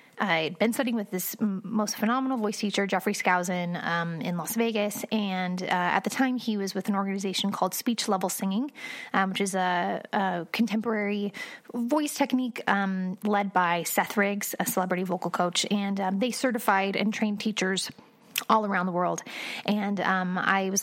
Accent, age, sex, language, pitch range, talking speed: American, 30-49, female, English, 190-235 Hz, 175 wpm